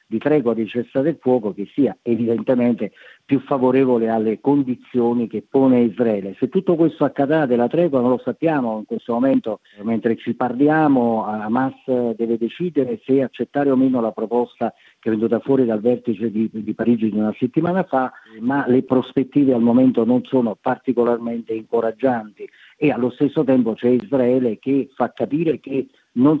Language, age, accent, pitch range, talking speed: Italian, 50-69, native, 115-135 Hz, 165 wpm